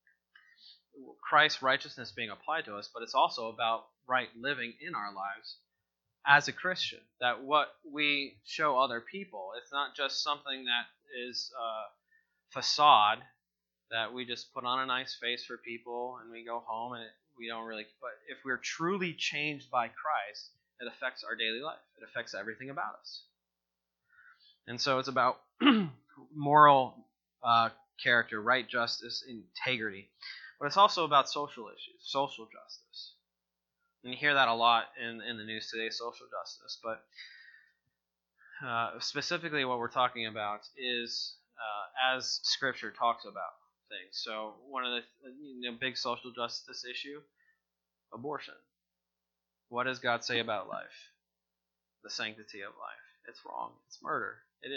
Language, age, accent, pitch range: English, 20-39, American, 110-140 Hz